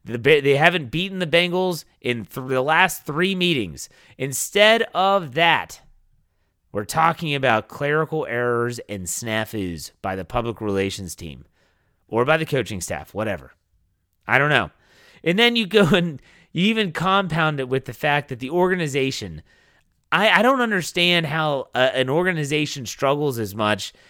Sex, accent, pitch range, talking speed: male, American, 115-165 Hz, 145 wpm